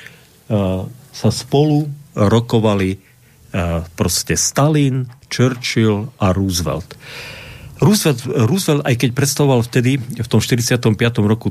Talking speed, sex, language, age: 95 wpm, male, Slovak, 50-69